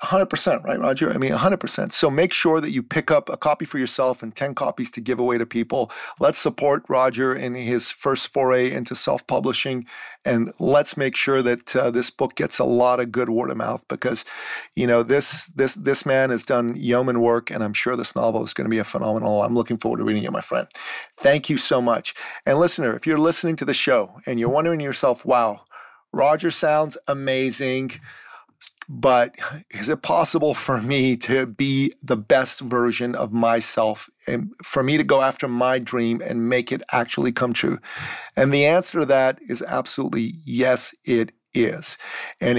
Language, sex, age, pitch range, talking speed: English, male, 40-59, 120-150 Hz, 200 wpm